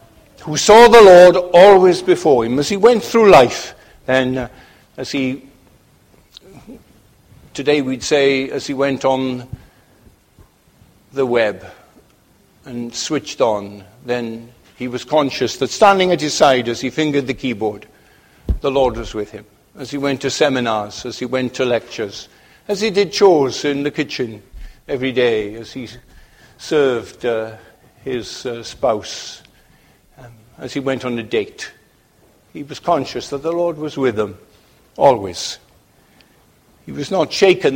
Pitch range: 120-165 Hz